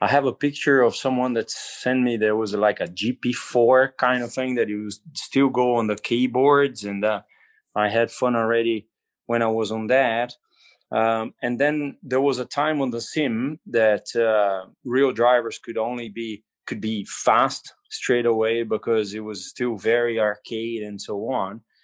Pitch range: 115-135 Hz